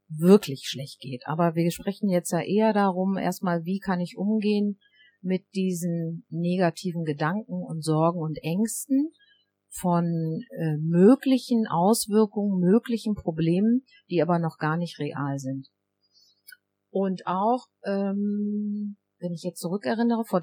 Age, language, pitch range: 50-69, German, 160-205 Hz